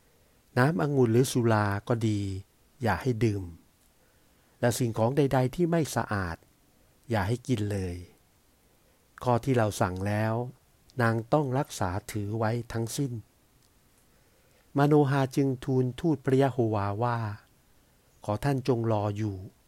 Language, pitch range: Thai, 105-125 Hz